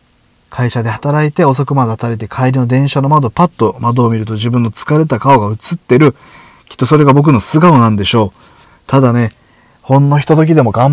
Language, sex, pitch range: Japanese, male, 115-170 Hz